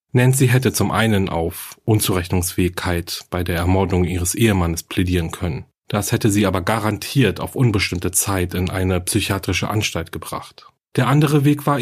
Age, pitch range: 40-59, 95-125 Hz